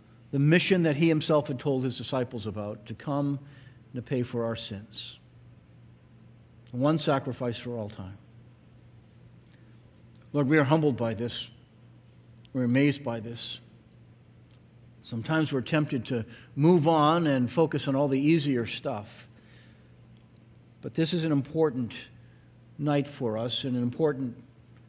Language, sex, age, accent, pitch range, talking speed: English, male, 50-69, American, 115-145 Hz, 135 wpm